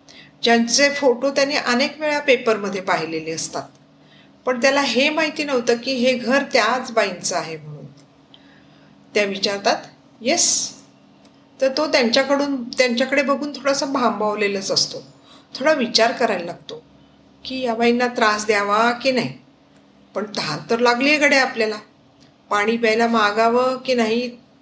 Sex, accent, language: female, native, Marathi